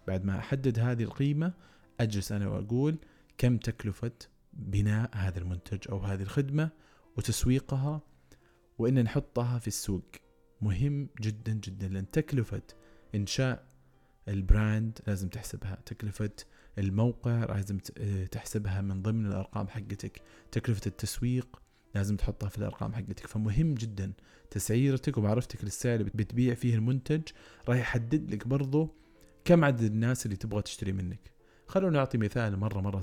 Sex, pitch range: male, 100-125 Hz